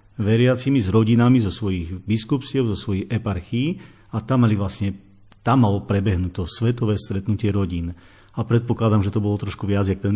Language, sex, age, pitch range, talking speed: Slovak, male, 40-59, 100-125 Hz, 160 wpm